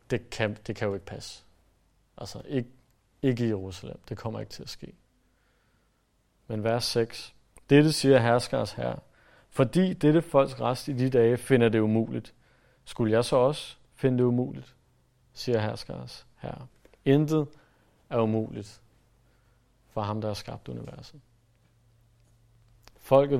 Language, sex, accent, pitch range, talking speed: Danish, male, native, 105-130 Hz, 140 wpm